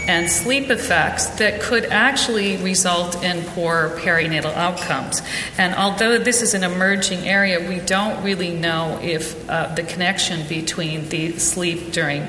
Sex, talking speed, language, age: female, 145 wpm, English, 40-59